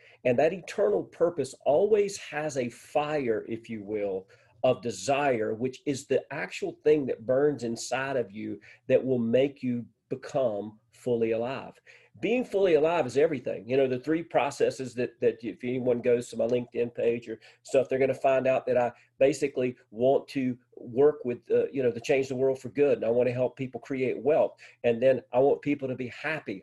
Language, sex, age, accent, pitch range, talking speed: English, male, 40-59, American, 120-150 Hz, 195 wpm